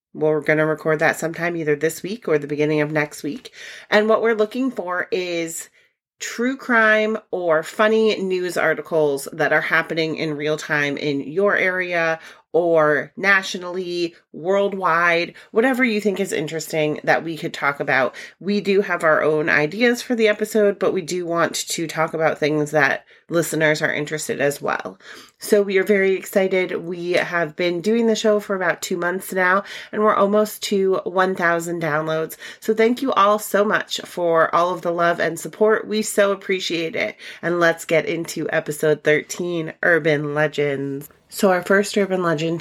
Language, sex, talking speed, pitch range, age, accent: English, female, 175 wpm, 155-200 Hz, 30-49, American